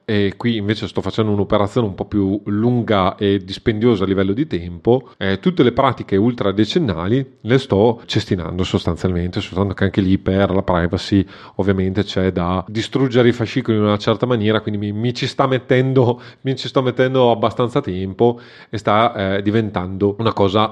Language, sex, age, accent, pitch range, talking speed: Italian, male, 30-49, native, 100-125 Hz, 175 wpm